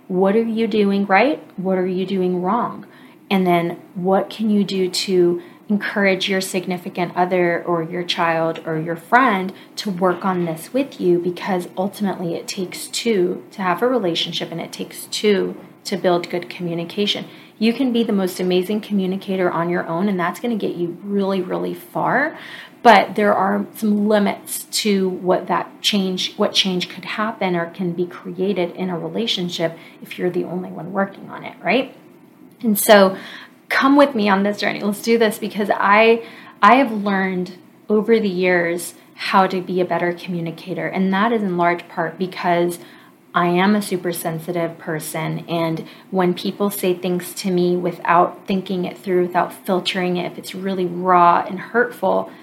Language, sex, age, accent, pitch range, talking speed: English, female, 30-49, American, 175-205 Hz, 175 wpm